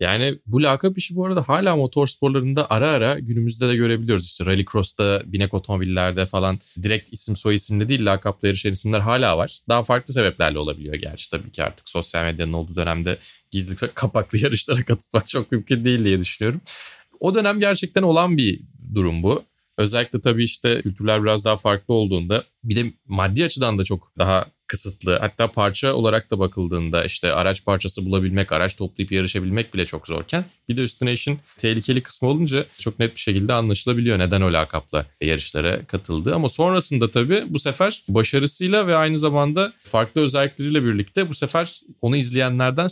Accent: native